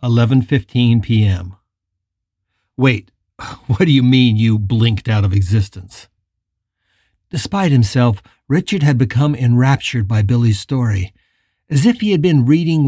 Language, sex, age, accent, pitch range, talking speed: English, male, 50-69, American, 100-140 Hz, 120 wpm